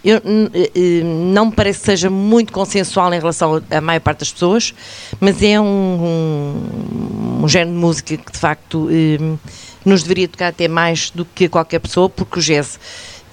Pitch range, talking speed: 150-190 Hz, 180 wpm